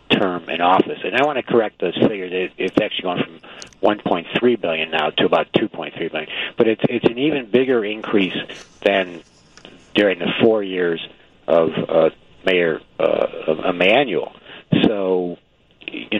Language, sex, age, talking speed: English, male, 50-69, 150 wpm